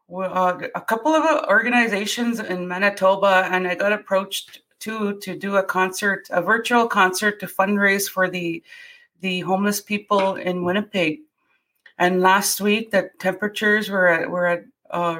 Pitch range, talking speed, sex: 175-210 Hz, 155 wpm, female